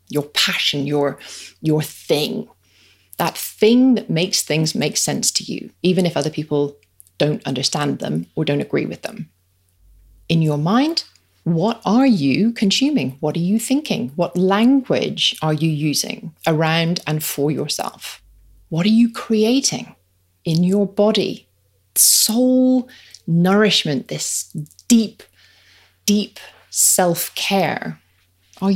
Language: English